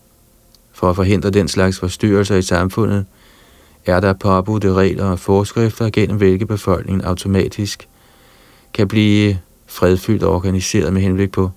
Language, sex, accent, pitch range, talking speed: Danish, male, native, 95-105 Hz, 135 wpm